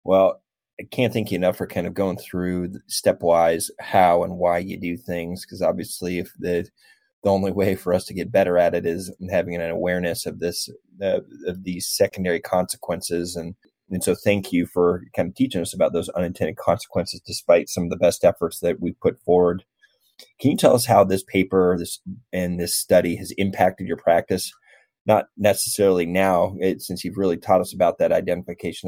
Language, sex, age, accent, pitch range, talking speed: English, male, 30-49, American, 90-95 Hz, 195 wpm